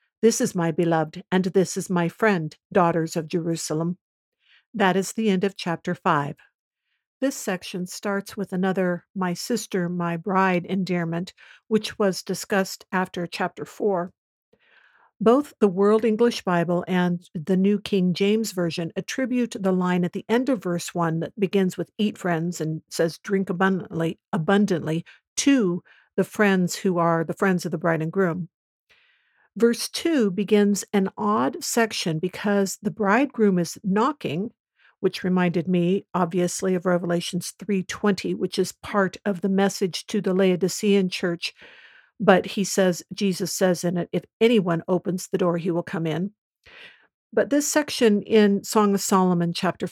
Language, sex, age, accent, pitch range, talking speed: English, female, 60-79, American, 175-210 Hz, 155 wpm